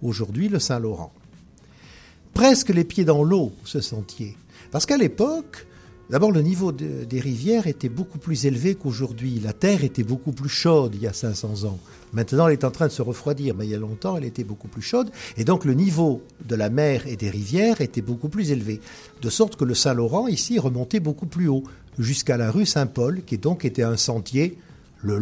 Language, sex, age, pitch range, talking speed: French, male, 60-79, 120-180 Hz, 205 wpm